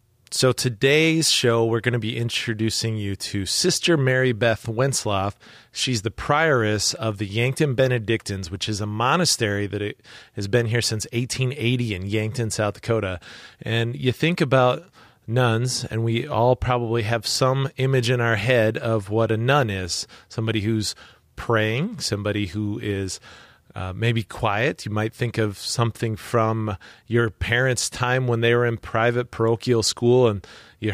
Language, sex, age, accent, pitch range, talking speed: English, male, 30-49, American, 110-125 Hz, 160 wpm